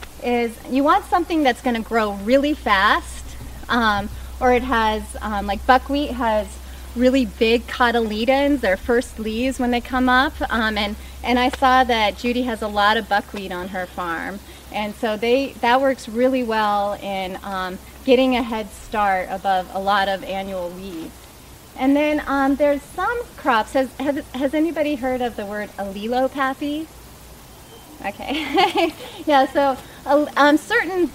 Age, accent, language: 30-49, American, English